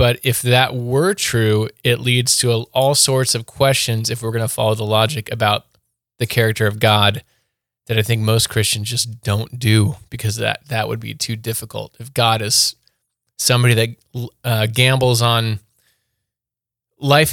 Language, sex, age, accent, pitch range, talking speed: English, male, 20-39, American, 110-130 Hz, 165 wpm